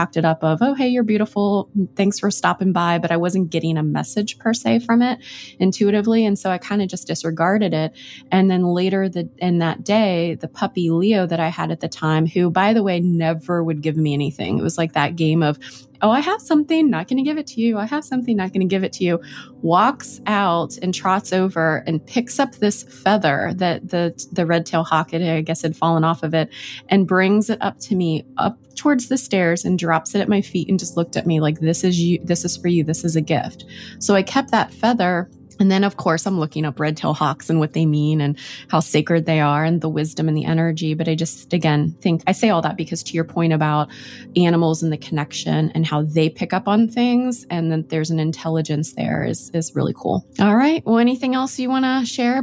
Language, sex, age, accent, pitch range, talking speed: English, female, 20-39, American, 160-210 Hz, 240 wpm